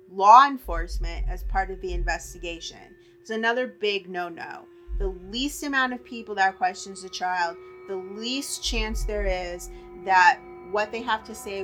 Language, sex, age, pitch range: English, female, 30-49, 190-245 Hz